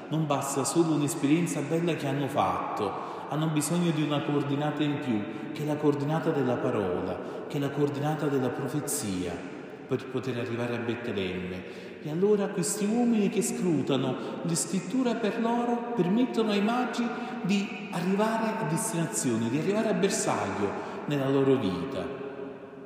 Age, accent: 40-59, native